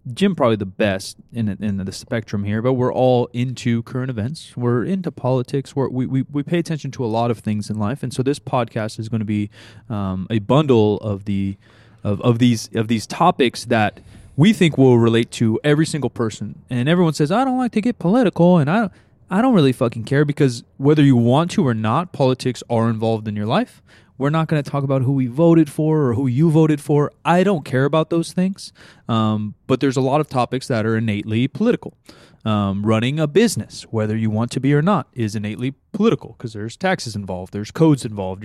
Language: English